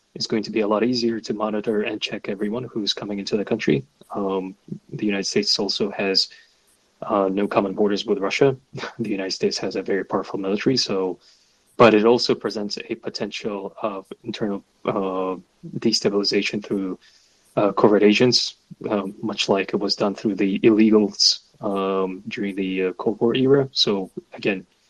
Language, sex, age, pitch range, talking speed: English, male, 20-39, 100-115 Hz, 165 wpm